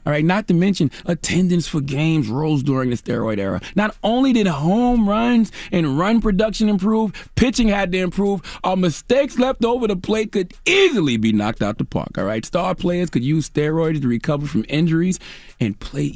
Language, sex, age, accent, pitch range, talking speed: English, male, 30-49, American, 130-200 Hz, 195 wpm